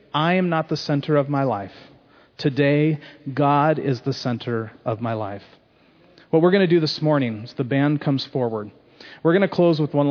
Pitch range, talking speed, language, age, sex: 140-180 Hz, 200 wpm, English, 40-59, male